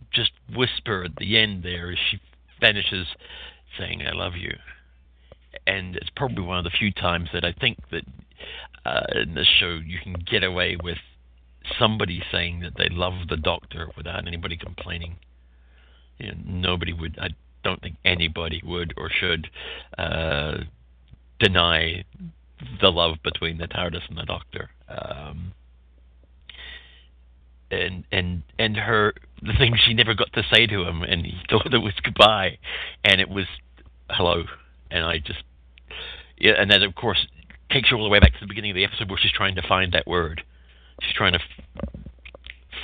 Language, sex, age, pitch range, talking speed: English, male, 60-79, 70-100 Hz, 170 wpm